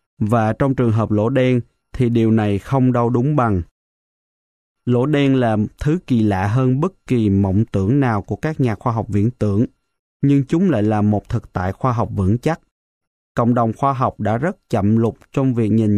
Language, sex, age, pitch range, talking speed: Vietnamese, male, 20-39, 105-135 Hz, 205 wpm